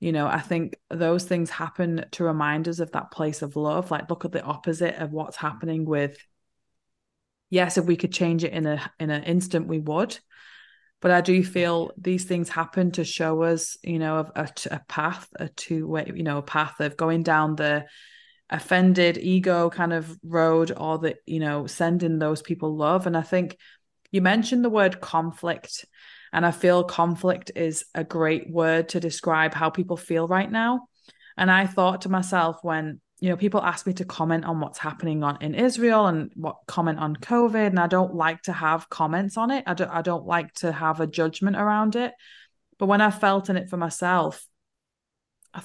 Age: 20-39